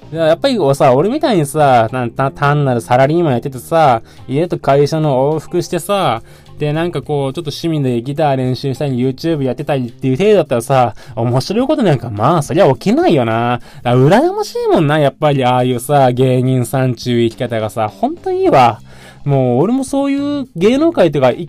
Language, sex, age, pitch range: Japanese, male, 20-39, 120-175 Hz